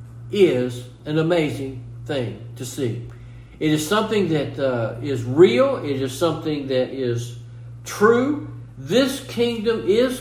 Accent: American